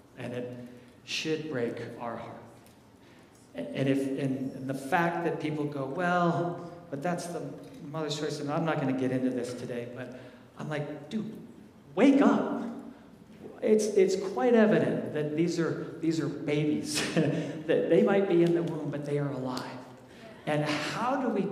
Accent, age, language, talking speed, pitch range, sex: American, 40-59, English, 165 wpm, 135-170 Hz, male